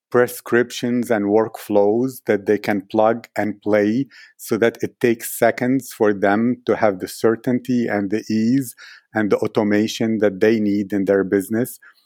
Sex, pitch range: male, 105-115 Hz